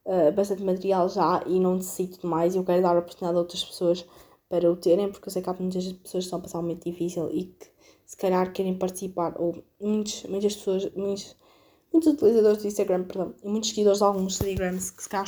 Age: 20-39